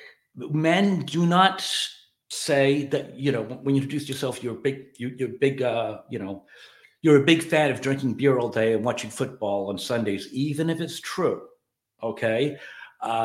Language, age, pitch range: English, 50-69, 115-150 Hz